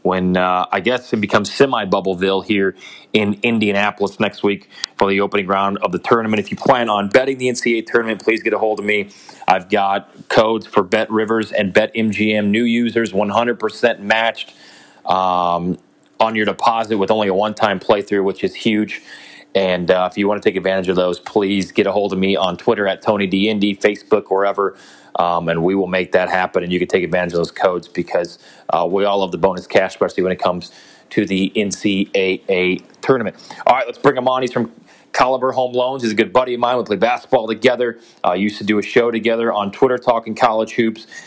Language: English